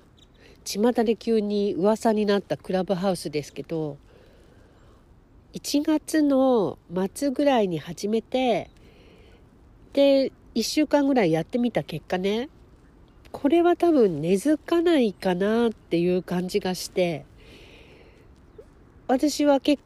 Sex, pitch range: female, 165-230 Hz